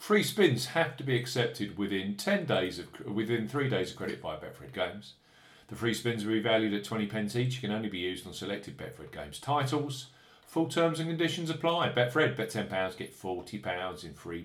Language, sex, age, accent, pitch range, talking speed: English, male, 40-59, British, 100-145 Hz, 210 wpm